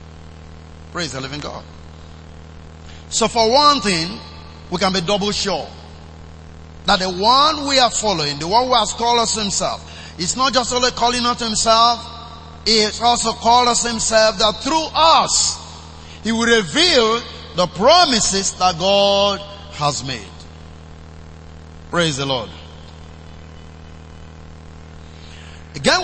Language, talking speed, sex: English, 125 wpm, male